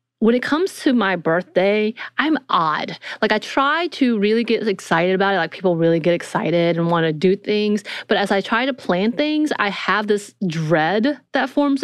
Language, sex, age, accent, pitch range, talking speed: English, female, 30-49, American, 175-225 Hz, 205 wpm